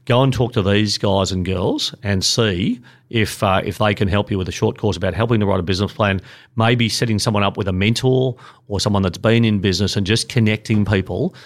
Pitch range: 95-110 Hz